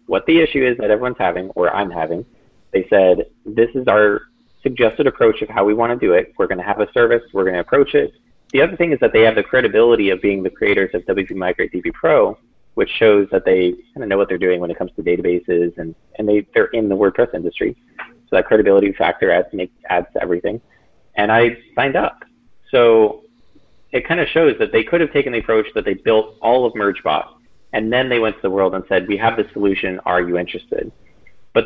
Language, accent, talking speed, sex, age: English, American, 230 wpm, male, 30-49